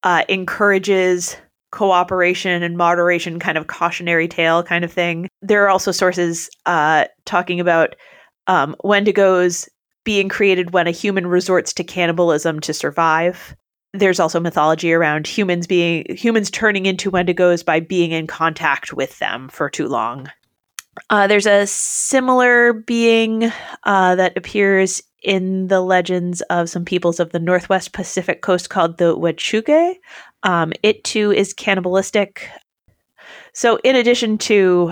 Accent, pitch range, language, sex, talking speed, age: American, 170-205 Hz, English, female, 140 wpm, 30-49